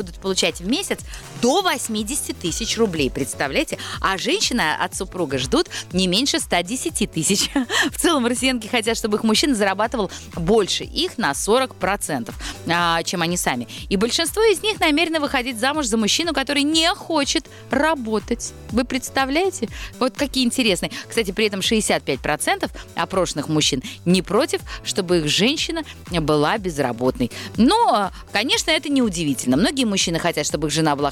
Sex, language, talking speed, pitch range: female, Russian, 150 wpm, 175-275 Hz